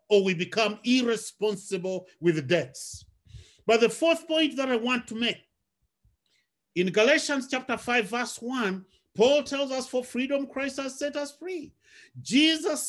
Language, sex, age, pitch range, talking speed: English, male, 50-69, 205-260 Hz, 150 wpm